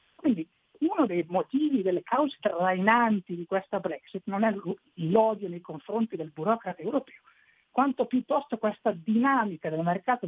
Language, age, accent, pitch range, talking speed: Italian, 50-69, native, 175-235 Hz, 140 wpm